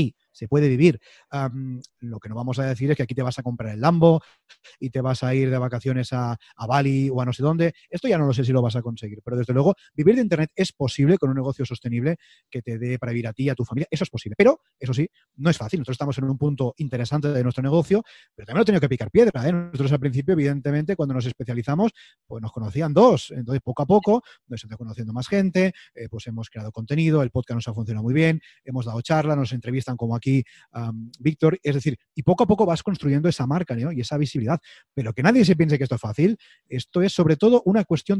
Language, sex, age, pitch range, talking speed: Spanish, male, 30-49, 125-165 Hz, 250 wpm